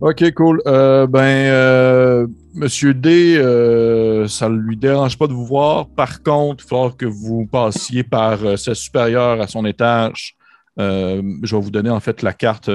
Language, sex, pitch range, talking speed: French, male, 100-125 Hz, 185 wpm